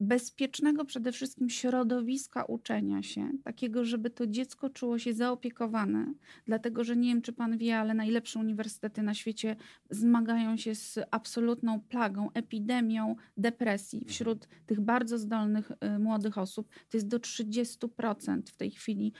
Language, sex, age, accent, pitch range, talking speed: Polish, female, 40-59, native, 225-265 Hz, 140 wpm